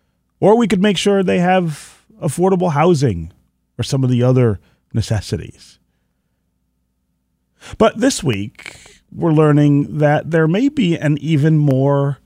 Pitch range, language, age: 110-155 Hz, English, 30-49